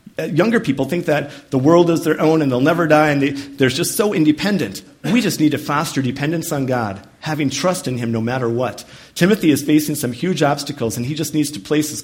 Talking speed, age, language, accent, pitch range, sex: 230 wpm, 40-59, English, American, 120-155 Hz, male